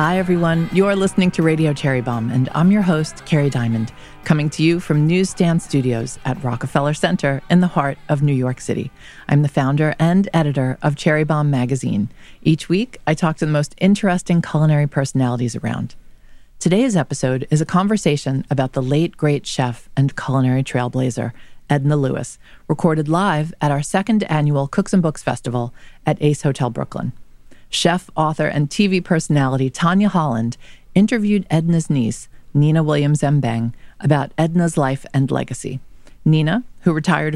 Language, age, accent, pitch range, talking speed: English, 40-59, American, 135-170 Hz, 160 wpm